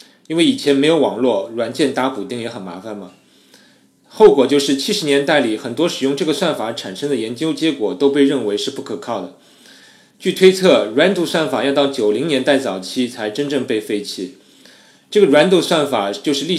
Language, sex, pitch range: Chinese, male, 120-165 Hz